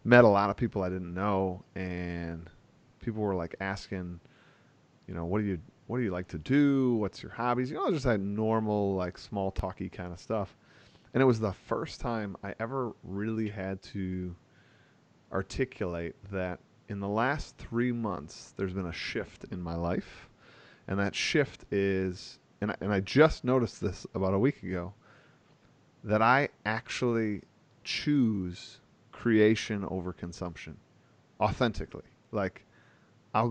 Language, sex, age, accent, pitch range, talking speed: English, male, 30-49, American, 95-120 Hz, 160 wpm